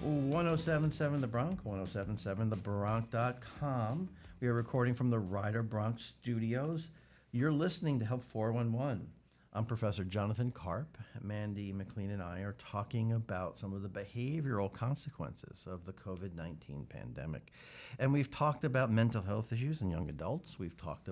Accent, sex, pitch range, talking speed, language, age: American, male, 95-125 Hz, 145 wpm, English, 50-69